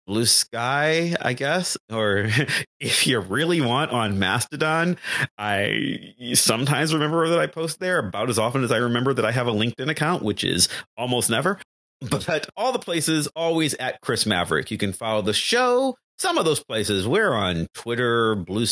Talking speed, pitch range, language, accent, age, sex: 175 wpm, 105-165 Hz, English, American, 30-49, male